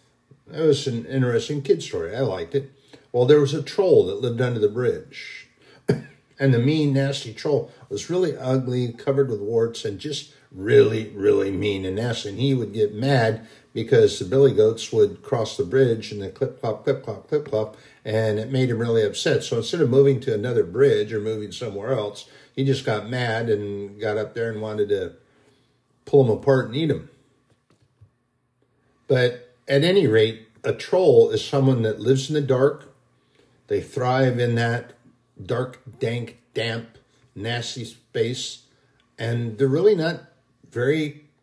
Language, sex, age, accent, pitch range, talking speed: English, male, 60-79, American, 120-145 Hz, 170 wpm